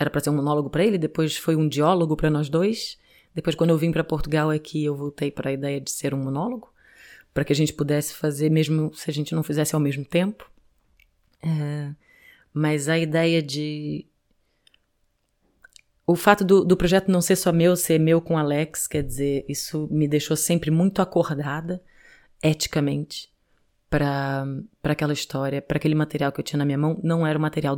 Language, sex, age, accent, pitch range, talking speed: Portuguese, female, 20-39, Brazilian, 140-160 Hz, 195 wpm